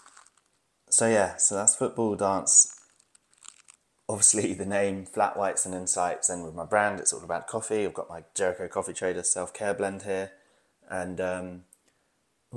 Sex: male